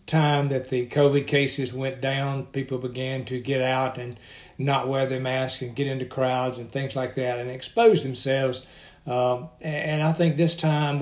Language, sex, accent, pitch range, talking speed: English, male, American, 130-140 Hz, 185 wpm